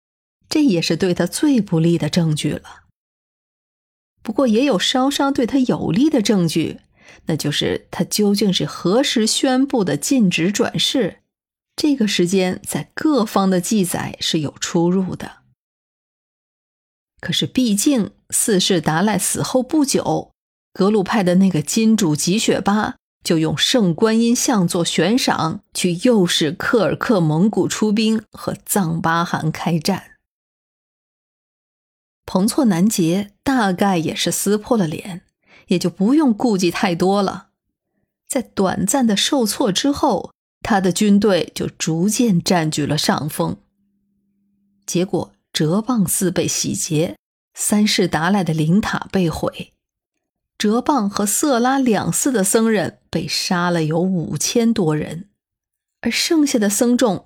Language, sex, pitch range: Chinese, female, 175-235 Hz